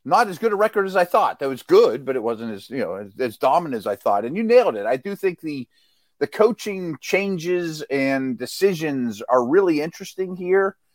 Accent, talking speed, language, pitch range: American, 220 wpm, English, 130-195 Hz